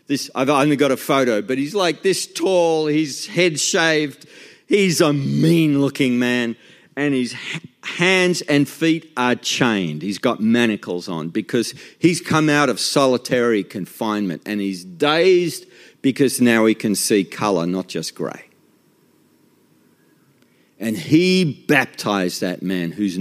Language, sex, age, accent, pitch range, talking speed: English, male, 50-69, Australian, 105-150 Hz, 135 wpm